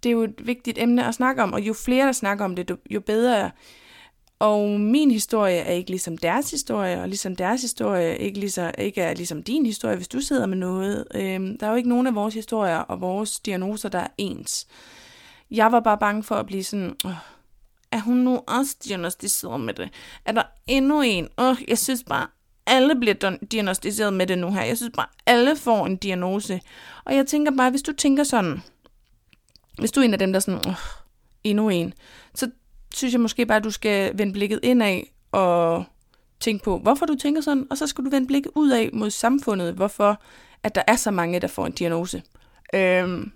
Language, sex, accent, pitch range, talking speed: Danish, female, native, 185-240 Hz, 205 wpm